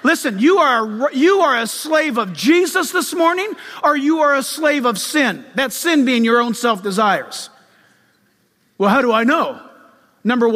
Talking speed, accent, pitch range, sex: 165 wpm, American, 235-295 Hz, male